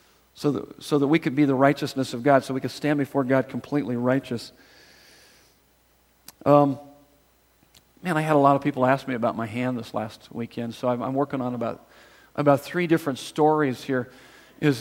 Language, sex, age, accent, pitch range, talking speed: English, male, 40-59, American, 130-155 Hz, 190 wpm